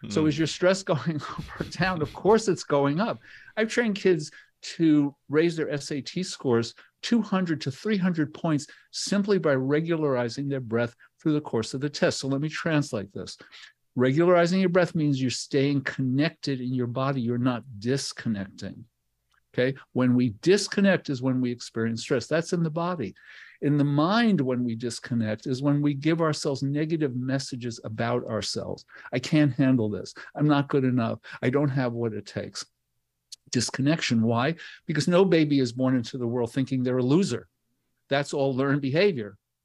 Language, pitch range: English, 120-150 Hz